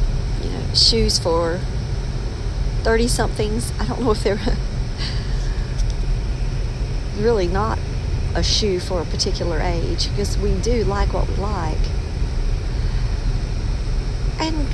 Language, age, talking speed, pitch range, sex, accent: English, 40-59, 100 wpm, 115-130 Hz, female, American